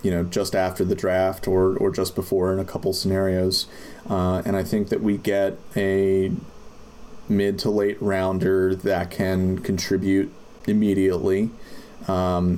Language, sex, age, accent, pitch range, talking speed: English, male, 30-49, American, 90-105 Hz, 150 wpm